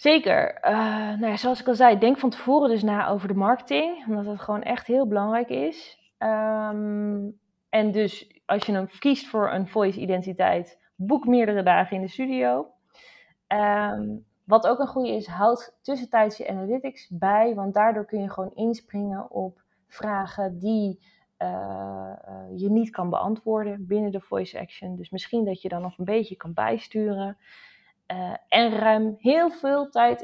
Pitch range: 185-230 Hz